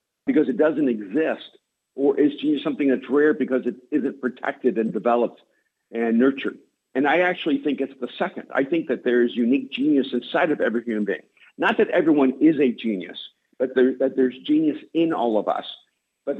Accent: American